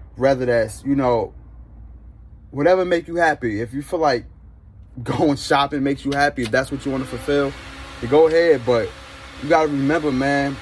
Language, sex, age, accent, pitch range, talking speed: English, male, 20-39, American, 100-155 Hz, 185 wpm